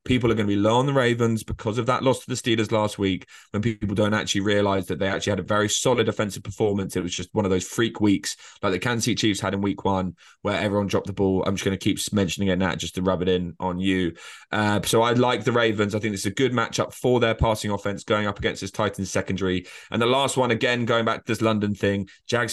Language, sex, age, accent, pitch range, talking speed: English, male, 20-39, British, 100-115 Hz, 275 wpm